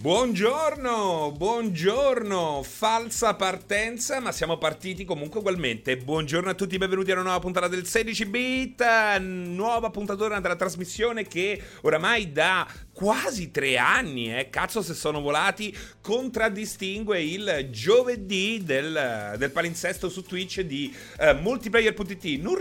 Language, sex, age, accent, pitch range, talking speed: Italian, male, 30-49, native, 145-215 Hz, 120 wpm